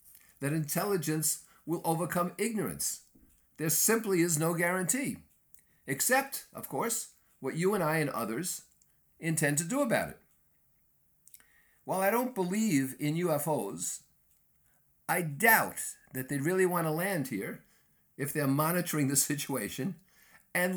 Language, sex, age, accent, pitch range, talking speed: English, male, 50-69, American, 130-175 Hz, 125 wpm